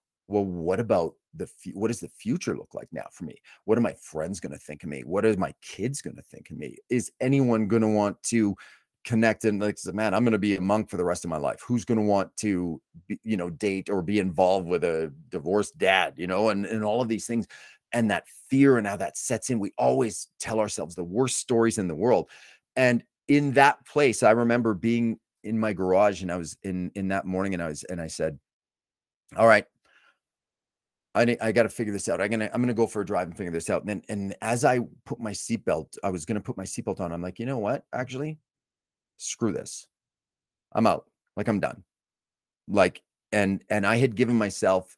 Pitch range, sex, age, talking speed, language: 95-115 Hz, male, 30-49, 235 wpm, English